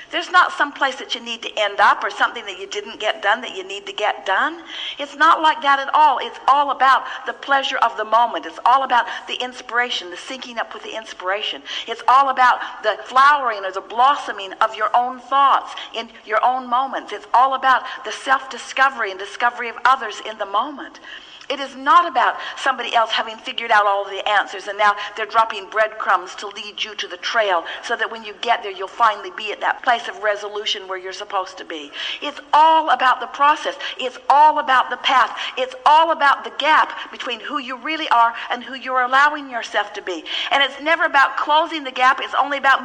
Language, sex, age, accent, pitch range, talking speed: English, female, 50-69, American, 220-280 Hz, 220 wpm